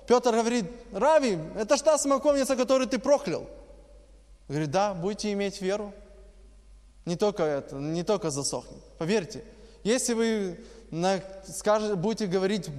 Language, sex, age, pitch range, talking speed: Russian, male, 20-39, 155-205 Hz, 115 wpm